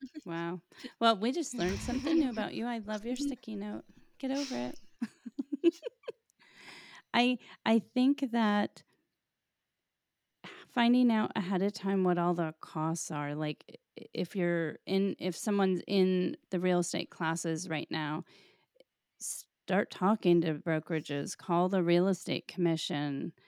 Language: English